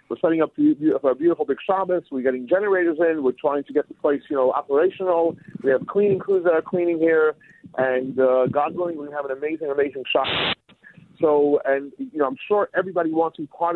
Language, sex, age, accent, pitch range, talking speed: English, male, 40-59, American, 155-205 Hz, 230 wpm